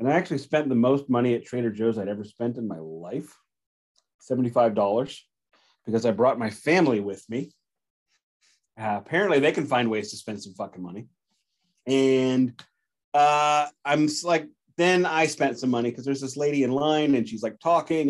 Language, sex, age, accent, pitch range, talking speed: English, male, 30-49, American, 120-170 Hz, 180 wpm